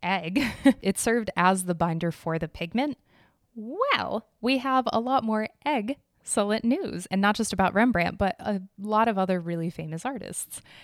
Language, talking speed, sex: English, 165 wpm, female